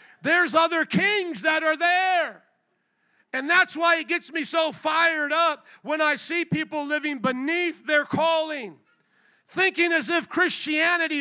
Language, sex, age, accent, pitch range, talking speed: English, male, 50-69, American, 295-355 Hz, 145 wpm